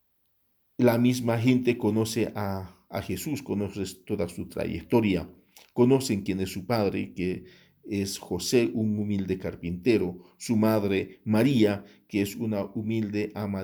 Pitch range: 105-125 Hz